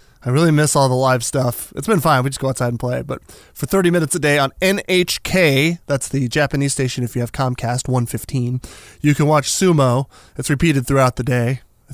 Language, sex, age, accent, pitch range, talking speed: English, male, 20-39, American, 125-175 Hz, 215 wpm